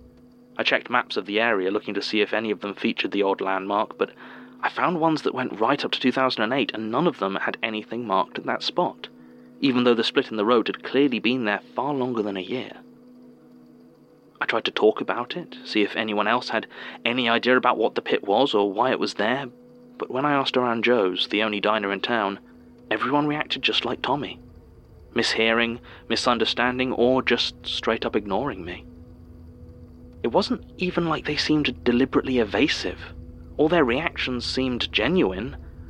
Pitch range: 85-120 Hz